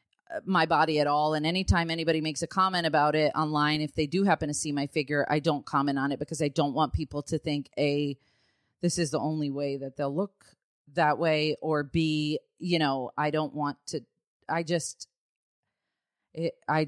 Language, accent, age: English, American, 30-49